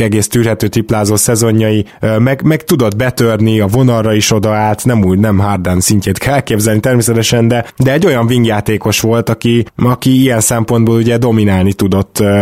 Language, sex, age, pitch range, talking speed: Hungarian, male, 20-39, 100-120 Hz, 165 wpm